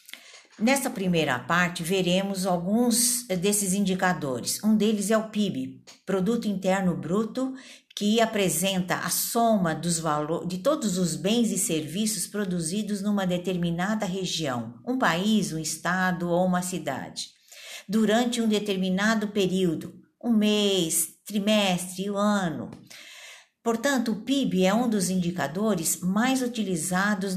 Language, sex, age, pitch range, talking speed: Portuguese, female, 50-69, 180-220 Hz, 125 wpm